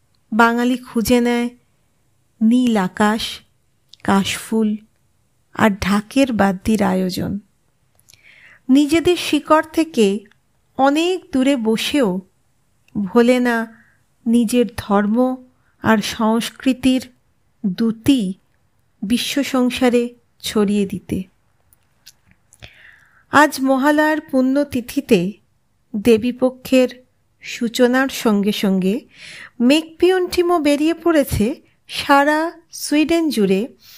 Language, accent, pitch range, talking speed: Bengali, native, 215-280 Hz, 75 wpm